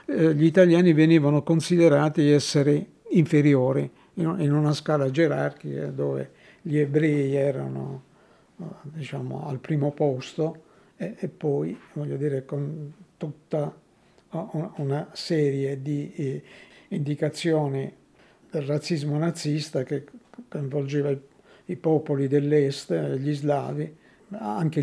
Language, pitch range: Italian, 145-165 Hz